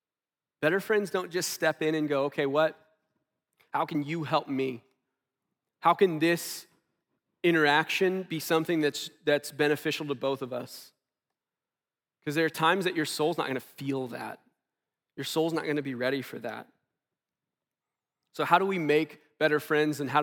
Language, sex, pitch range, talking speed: English, male, 140-175 Hz, 165 wpm